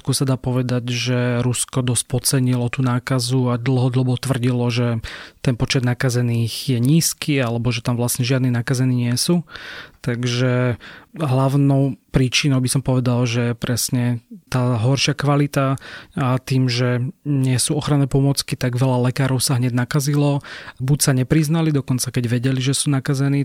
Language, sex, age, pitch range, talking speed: Slovak, male, 30-49, 125-140 Hz, 155 wpm